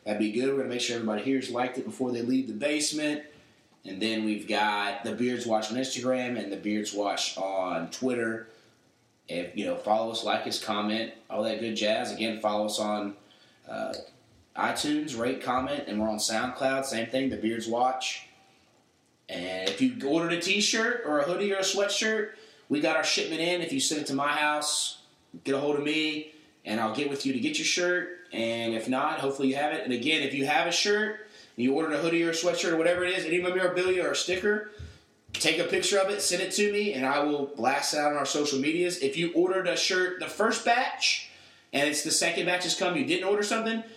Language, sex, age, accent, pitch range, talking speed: English, male, 30-49, American, 120-180 Hz, 235 wpm